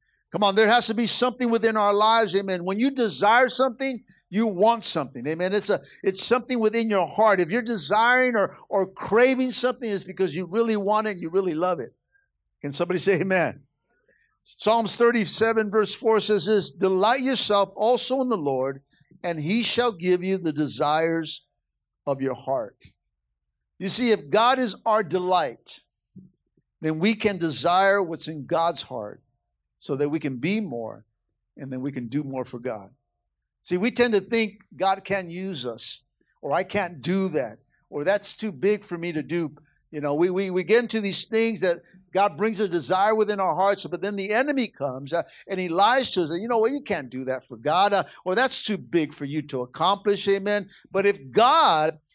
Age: 50-69